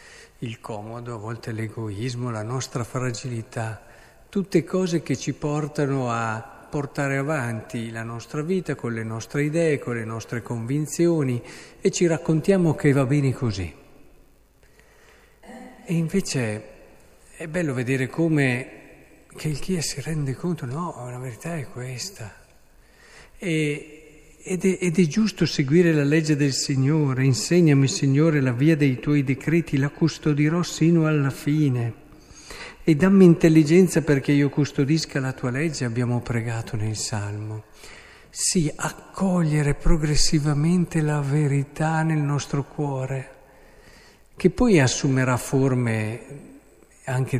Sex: male